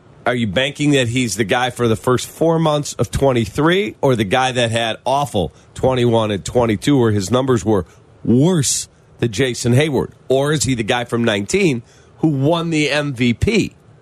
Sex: male